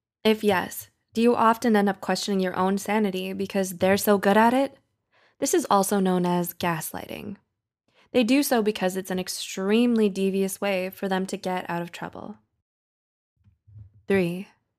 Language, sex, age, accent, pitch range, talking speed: English, female, 20-39, American, 180-215 Hz, 160 wpm